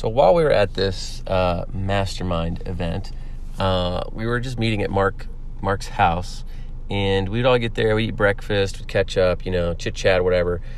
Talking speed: 190 wpm